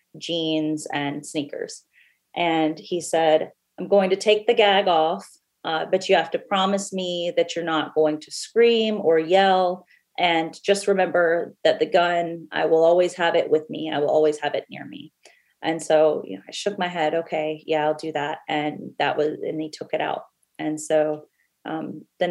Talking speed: 190 wpm